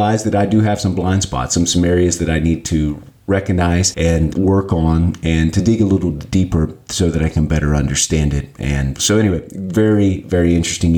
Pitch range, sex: 85-110 Hz, male